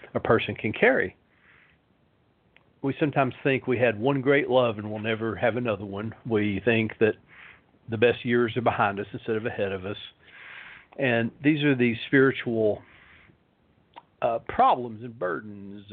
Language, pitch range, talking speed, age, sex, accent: English, 100-120 Hz, 155 wpm, 50-69, male, American